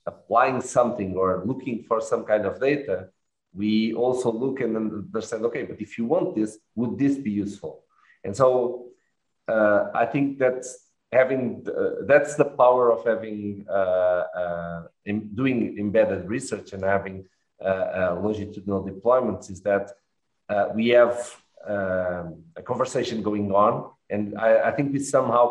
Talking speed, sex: 155 wpm, male